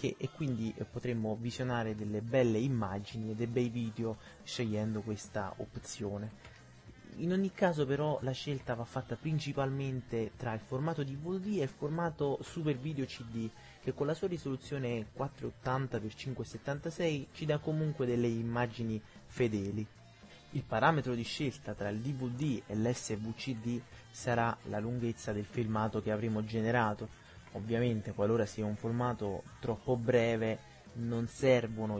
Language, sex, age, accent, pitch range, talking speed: Italian, male, 20-39, native, 110-130 Hz, 135 wpm